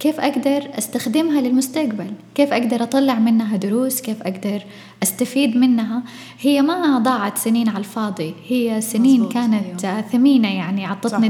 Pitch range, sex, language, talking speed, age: 205-240 Hz, female, Arabic, 135 wpm, 10-29